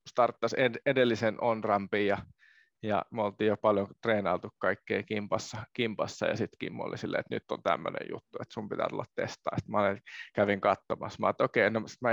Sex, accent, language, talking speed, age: male, native, Finnish, 185 wpm, 20-39